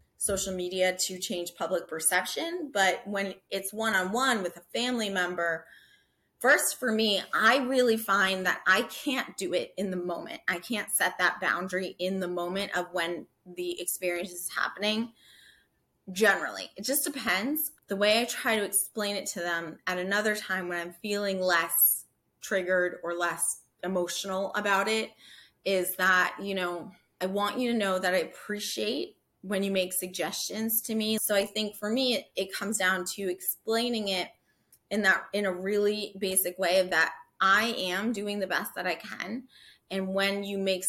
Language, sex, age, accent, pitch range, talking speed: English, female, 20-39, American, 180-215 Hz, 170 wpm